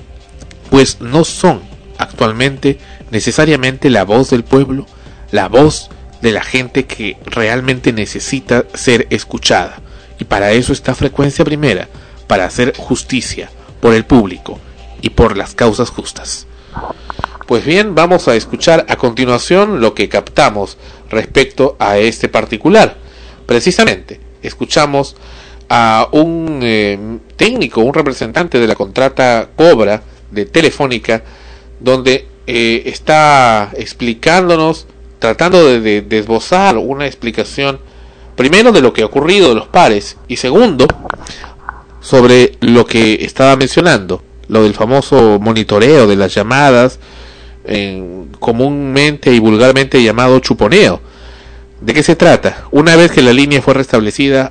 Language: Spanish